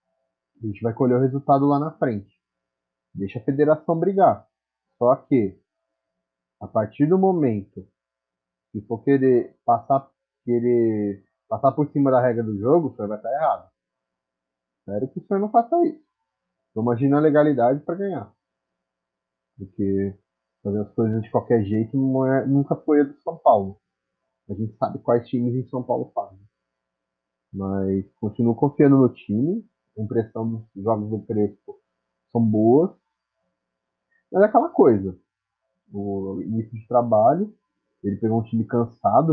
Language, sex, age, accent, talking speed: Portuguese, male, 30-49, Brazilian, 145 wpm